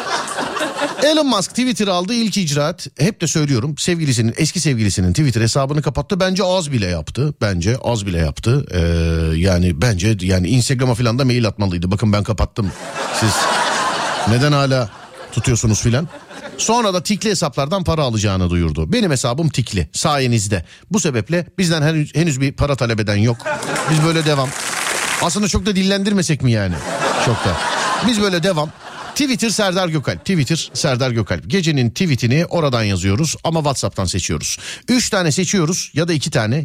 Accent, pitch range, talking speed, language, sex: native, 110-165 Hz, 150 wpm, Turkish, male